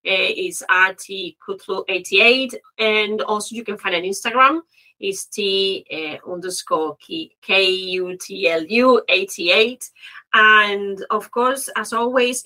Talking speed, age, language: 115 wpm, 30-49, English